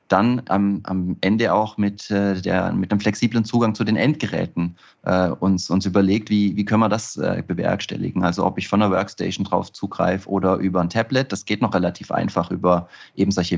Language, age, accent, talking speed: German, 30-49, German, 200 wpm